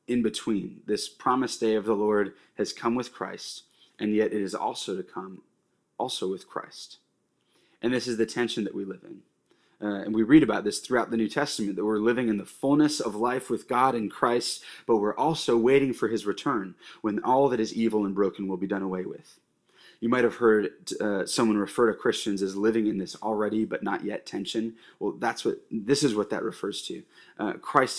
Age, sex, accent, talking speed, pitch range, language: 30-49, male, American, 215 wpm, 110-135 Hz, English